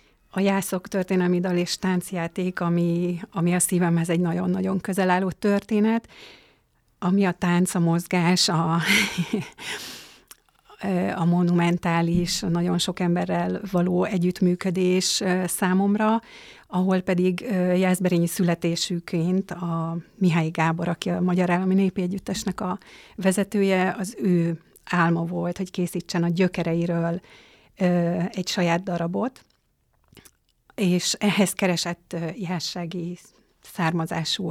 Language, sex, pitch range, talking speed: Hungarian, female, 175-190 Hz, 105 wpm